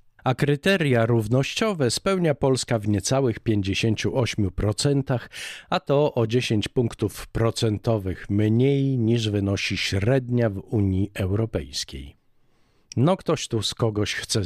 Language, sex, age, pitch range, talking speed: Polish, male, 50-69, 105-135 Hz, 110 wpm